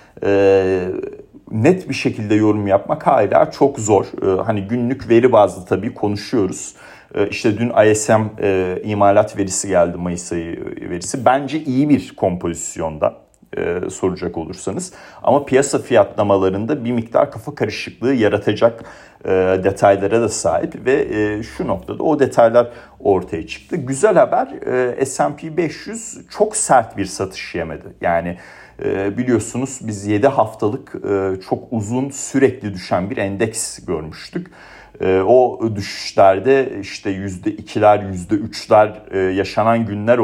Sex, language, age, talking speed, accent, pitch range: male, Turkish, 40-59, 130 wpm, native, 95-125 Hz